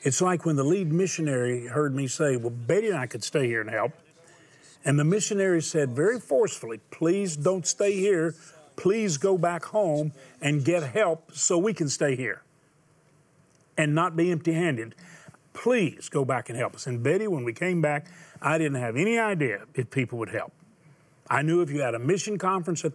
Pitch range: 140-175 Hz